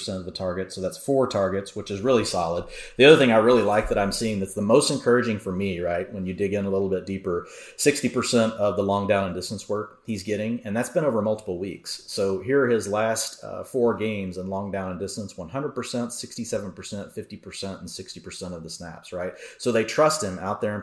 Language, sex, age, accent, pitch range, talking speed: English, male, 30-49, American, 95-110 Hz, 230 wpm